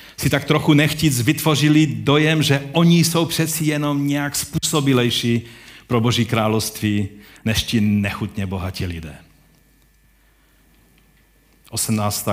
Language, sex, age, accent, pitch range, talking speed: Czech, male, 50-69, native, 100-145 Hz, 105 wpm